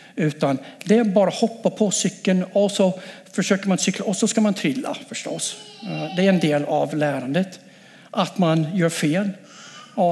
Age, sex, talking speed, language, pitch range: 60-79, male, 170 wpm, English, 160-215 Hz